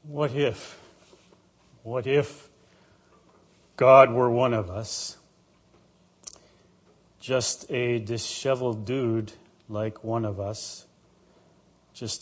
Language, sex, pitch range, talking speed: English, male, 110-145 Hz, 90 wpm